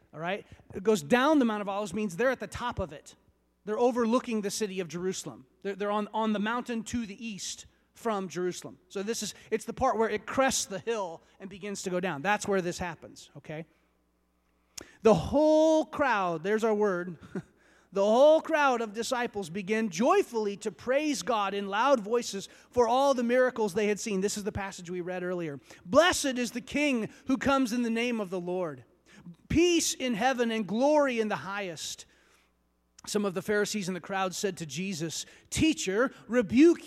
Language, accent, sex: English, American, male